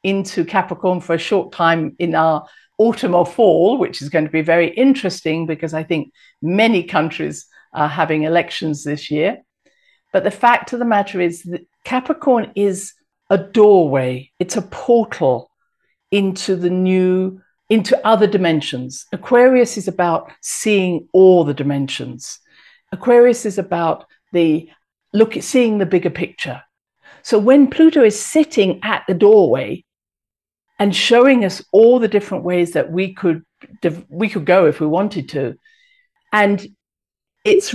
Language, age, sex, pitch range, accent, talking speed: English, 50-69, female, 165-220 Hz, British, 150 wpm